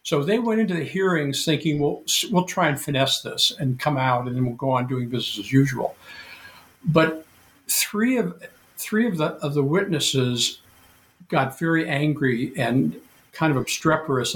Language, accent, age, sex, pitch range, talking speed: English, American, 60-79, male, 130-170 Hz, 170 wpm